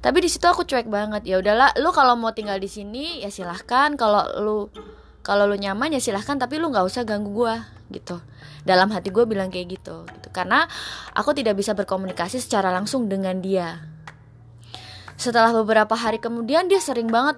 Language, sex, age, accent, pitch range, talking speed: Indonesian, female, 20-39, native, 190-245 Hz, 185 wpm